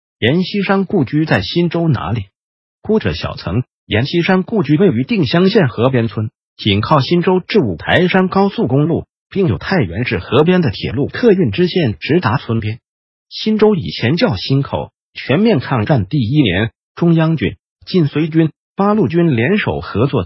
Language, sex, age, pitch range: Chinese, male, 50-69, 125-185 Hz